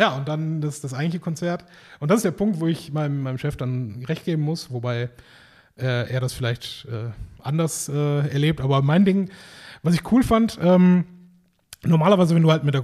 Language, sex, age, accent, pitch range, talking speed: German, male, 30-49, German, 135-170 Hz, 205 wpm